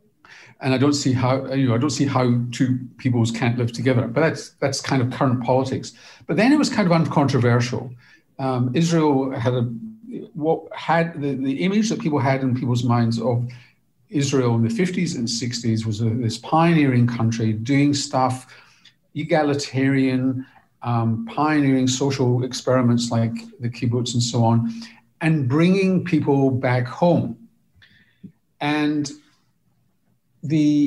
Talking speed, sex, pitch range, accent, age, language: 150 wpm, male, 125-155 Hz, British, 50-69, English